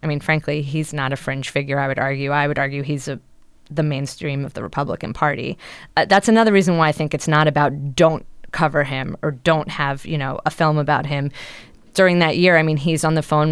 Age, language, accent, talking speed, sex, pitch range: 20-39, English, American, 230 wpm, female, 145-175 Hz